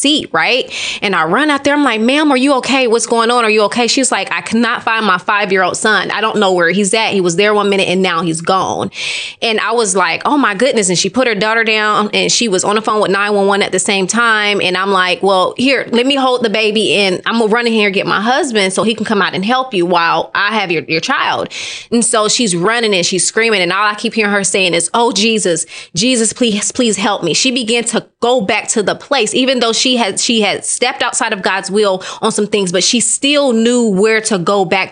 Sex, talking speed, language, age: female, 265 wpm, English, 20-39